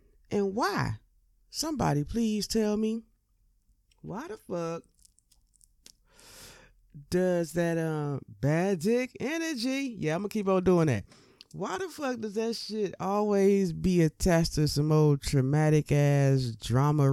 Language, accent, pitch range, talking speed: English, American, 145-225 Hz, 135 wpm